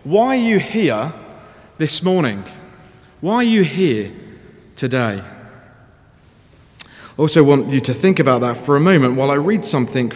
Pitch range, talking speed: 120-155 Hz, 155 wpm